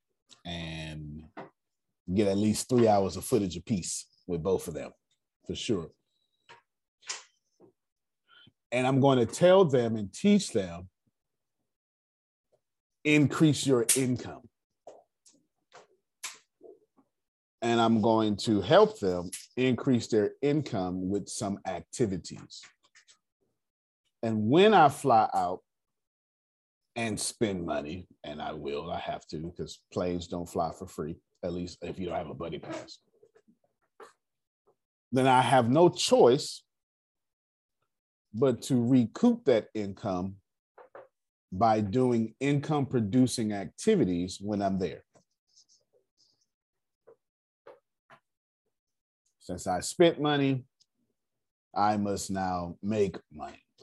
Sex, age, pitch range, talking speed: male, 30-49, 95-140 Hz, 105 wpm